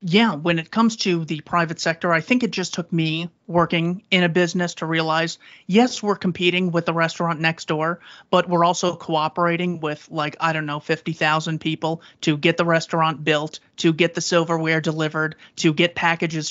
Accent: American